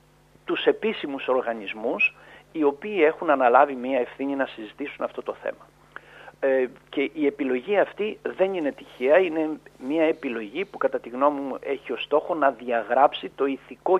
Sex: male